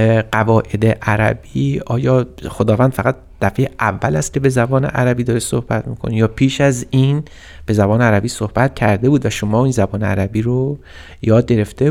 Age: 30-49